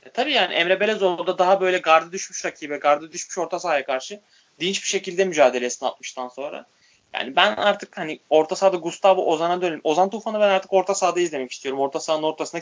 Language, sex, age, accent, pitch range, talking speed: Turkish, male, 20-39, native, 135-170 Hz, 200 wpm